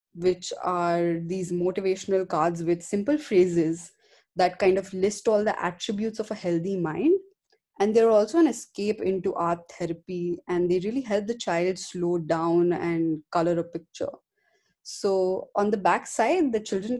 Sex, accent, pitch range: female, Indian, 175-205 Hz